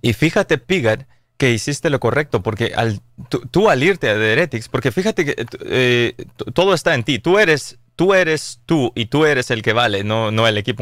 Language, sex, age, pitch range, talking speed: English, male, 30-49, 115-150 Hz, 215 wpm